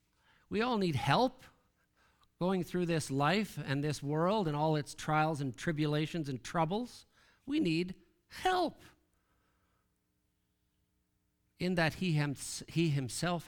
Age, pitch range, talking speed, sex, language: 50-69, 125-175 Hz, 115 wpm, male, English